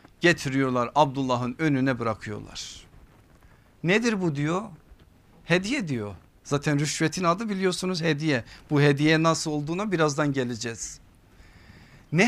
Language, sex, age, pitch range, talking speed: Turkish, male, 50-69, 120-185 Hz, 105 wpm